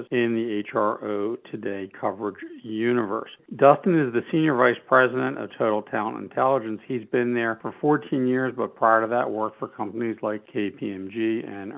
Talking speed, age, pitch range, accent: 165 wpm, 60-79, 110-130 Hz, American